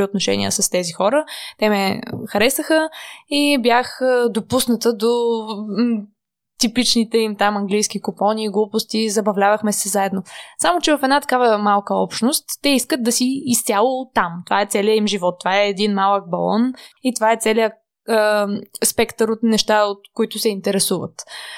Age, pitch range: 20-39, 205-245 Hz